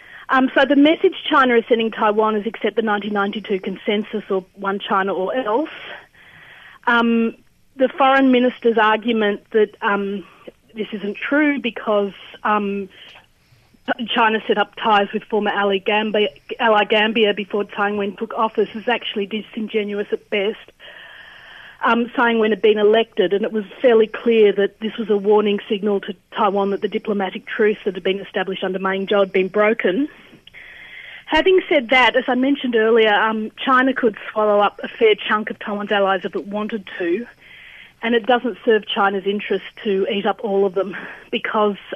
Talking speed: 165 wpm